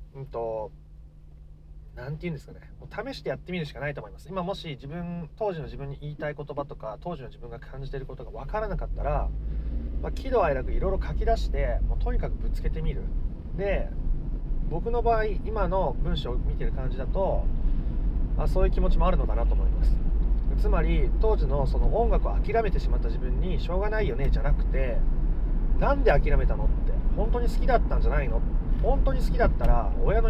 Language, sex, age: Japanese, male, 30-49